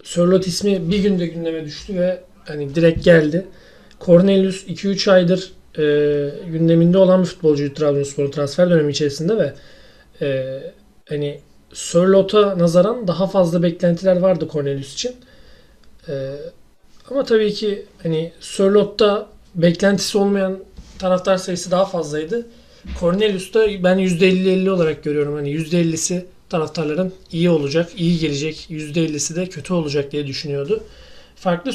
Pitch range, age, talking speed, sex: 155-195 Hz, 40-59, 120 wpm, male